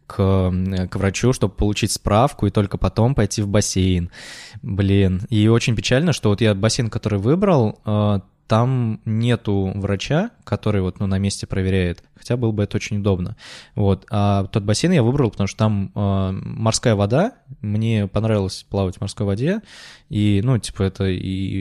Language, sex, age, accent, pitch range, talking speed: Russian, male, 20-39, native, 100-120 Hz, 165 wpm